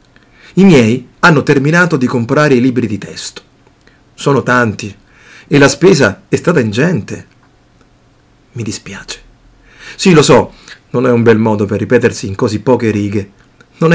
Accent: native